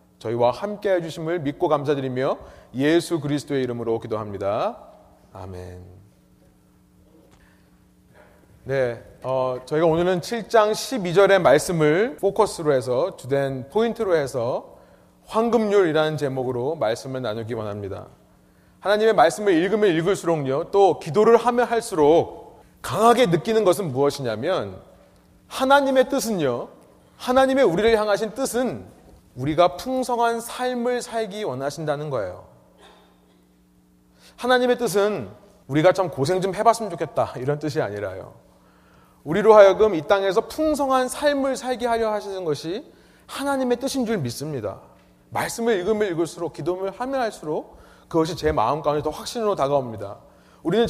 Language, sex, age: Korean, male, 30-49